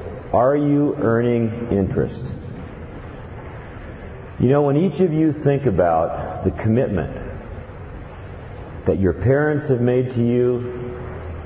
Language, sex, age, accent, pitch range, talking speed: English, male, 50-69, American, 95-125 Hz, 110 wpm